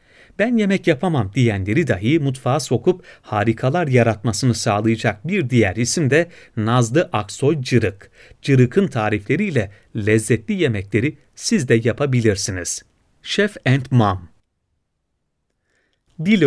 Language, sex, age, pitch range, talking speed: Turkish, male, 40-59, 110-160 Hz, 100 wpm